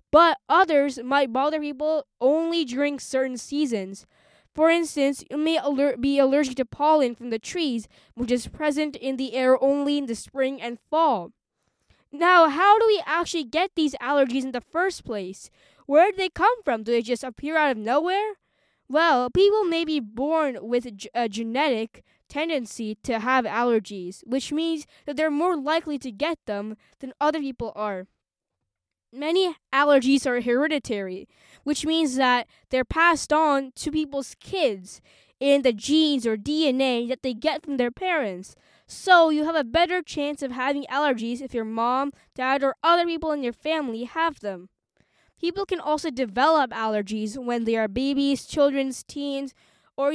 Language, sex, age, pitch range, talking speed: English, female, 10-29, 245-310 Hz, 165 wpm